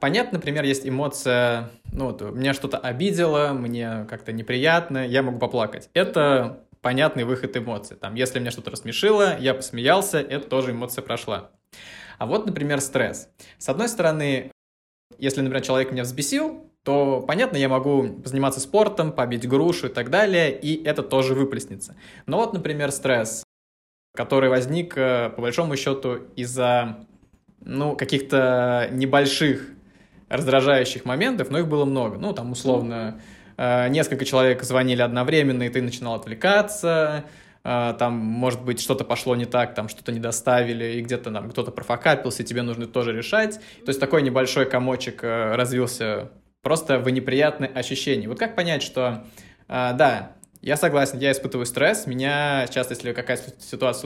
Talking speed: 150 wpm